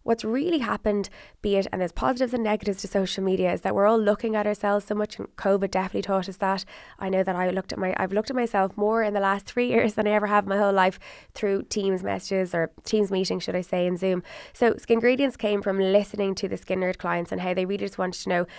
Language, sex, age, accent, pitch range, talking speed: English, female, 20-39, Irish, 180-205 Hz, 270 wpm